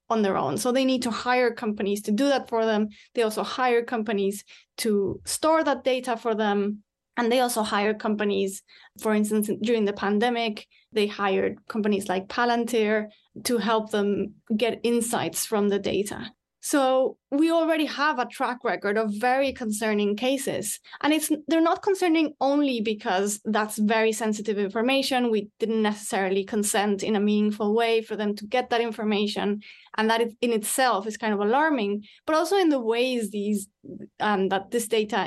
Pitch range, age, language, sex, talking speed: 210-250 Hz, 20-39, English, female, 170 wpm